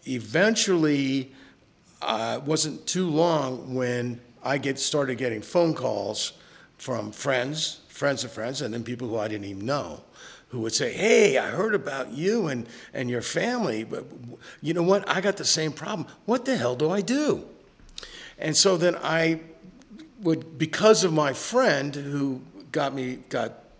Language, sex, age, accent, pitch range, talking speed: English, male, 50-69, American, 120-165 Hz, 165 wpm